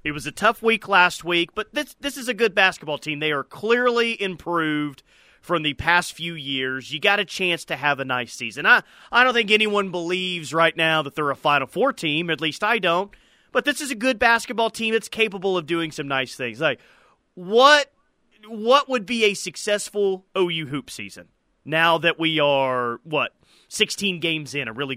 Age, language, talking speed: 30-49, English, 205 wpm